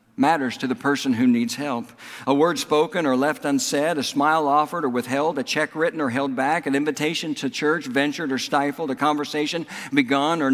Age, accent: 60-79, American